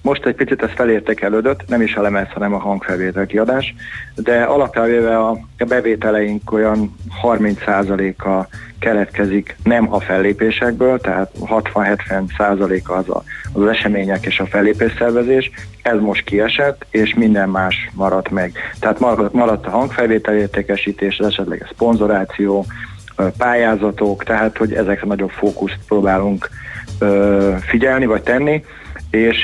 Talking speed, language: 120 wpm, Hungarian